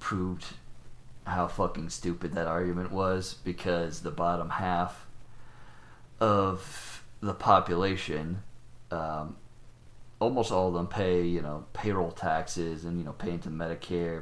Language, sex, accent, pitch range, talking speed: English, male, American, 85-95 Hz, 125 wpm